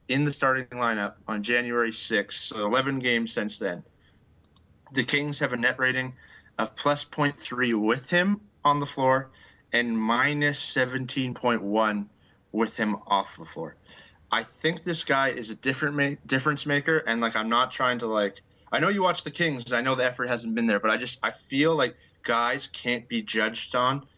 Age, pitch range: 20-39, 110-135 Hz